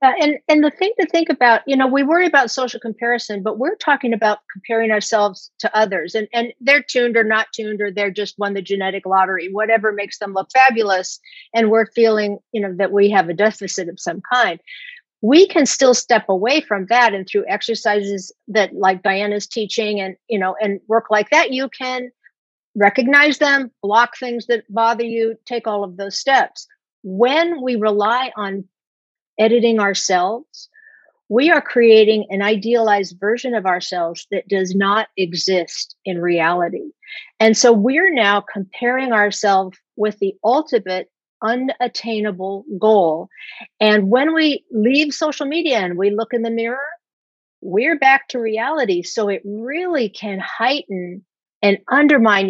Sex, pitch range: female, 200-260 Hz